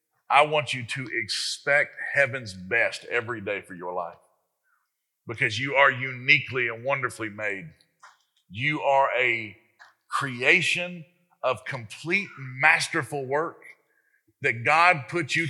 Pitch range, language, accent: 125-160 Hz, English, American